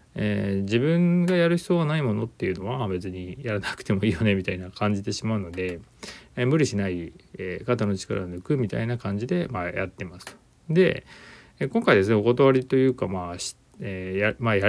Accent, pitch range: native, 95-135 Hz